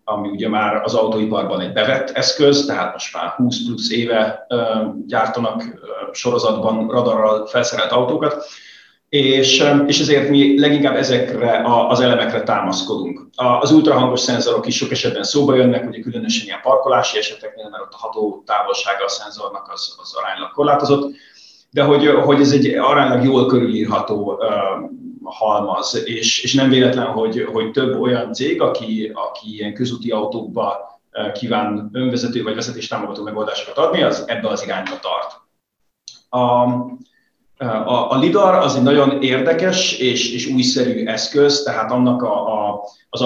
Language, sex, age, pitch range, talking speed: English, male, 30-49, 110-140 Hz, 140 wpm